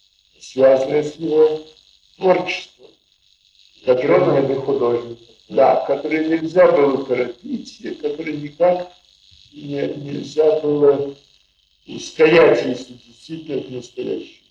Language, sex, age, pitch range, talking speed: Russian, male, 50-69, 135-180 Hz, 95 wpm